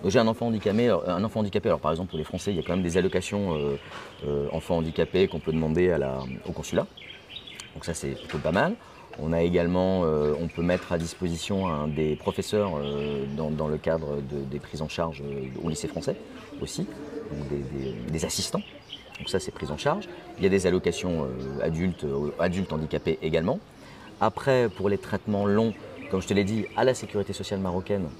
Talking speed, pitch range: 215 wpm, 80-100 Hz